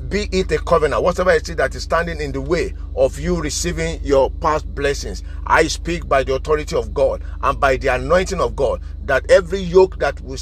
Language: English